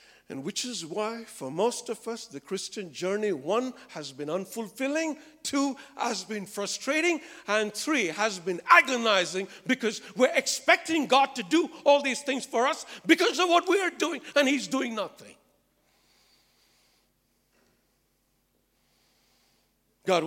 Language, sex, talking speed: English, male, 135 wpm